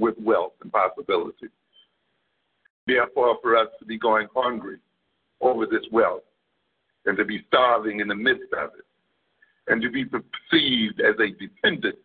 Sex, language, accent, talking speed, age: male, English, American, 150 wpm, 60-79